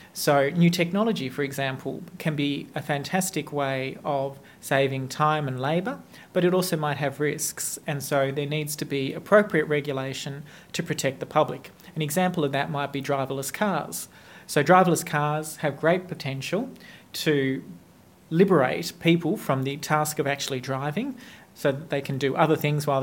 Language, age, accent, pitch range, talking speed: English, 40-59, Australian, 140-170 Hz, 165 wpm